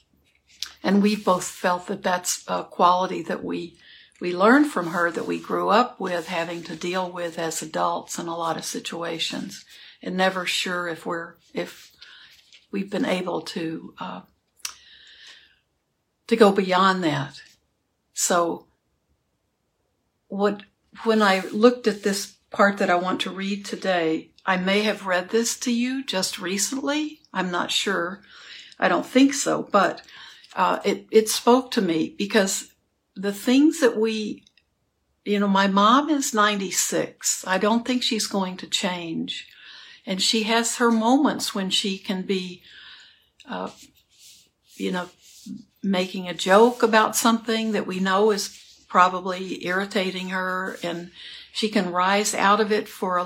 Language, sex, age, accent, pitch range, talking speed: English, female, 60-79, American, 180-220 Hz, 150 wpm